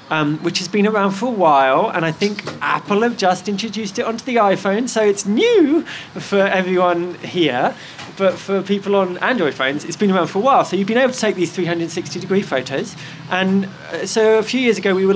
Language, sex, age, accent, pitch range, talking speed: English, male, 20-39, British, 160-205 Hz, 220 wpm